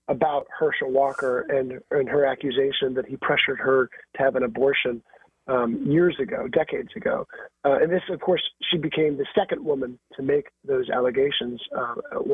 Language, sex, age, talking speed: English, male, 40-59, 170 wpm